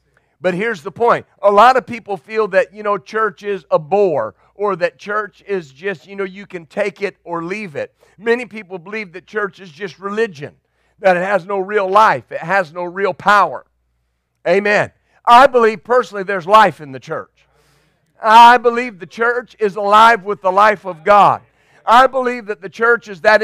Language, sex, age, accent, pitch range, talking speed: English, male, 50-69, American, 170-220 Hz, 195 wpm